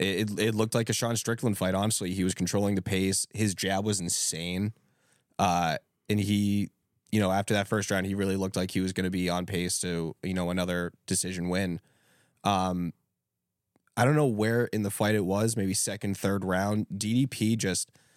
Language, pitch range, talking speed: English, 95-110 Hz, 200 wpm